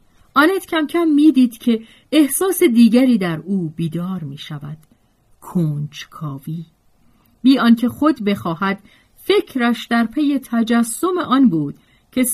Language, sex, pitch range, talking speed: Persian, female, 165-255 Hz, 120 wpm